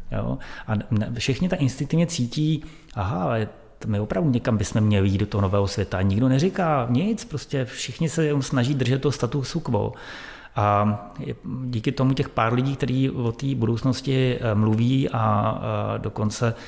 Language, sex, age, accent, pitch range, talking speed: Czech, male, 30-49, native, 105-125 Hz, 155 wpm